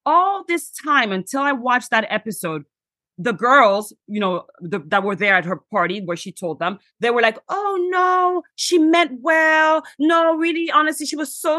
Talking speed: 190 wpm